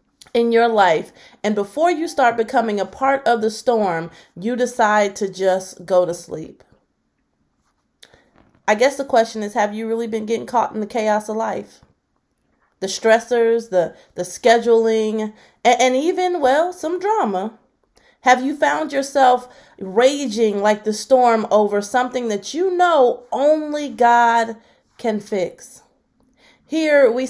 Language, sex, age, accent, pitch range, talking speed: English, female, 30-49, American, 215-260 Hz, 145 wpm